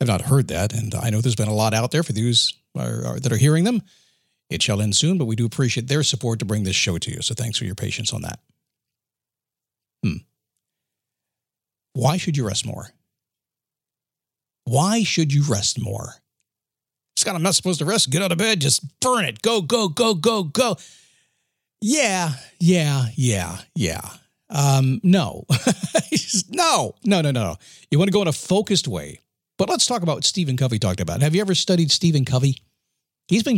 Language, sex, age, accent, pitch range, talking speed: English, male, 50-69, American, 115-165 Hz, 190 wpm